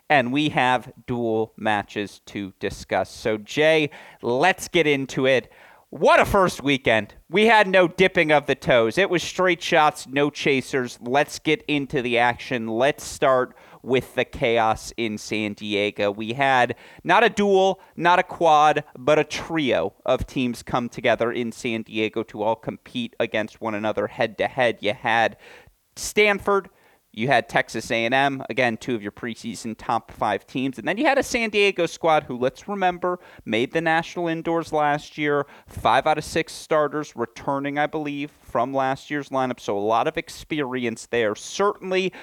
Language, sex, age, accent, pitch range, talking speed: English, male, 30-49, American, 115-165 Hz, 170 wpm